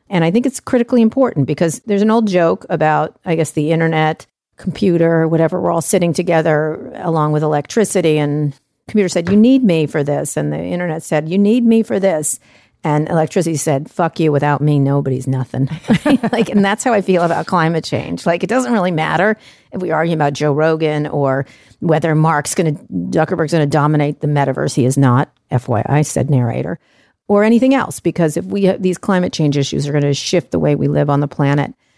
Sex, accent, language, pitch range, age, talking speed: female, American, English, 145-180 Hz, 50-69, 205 wpm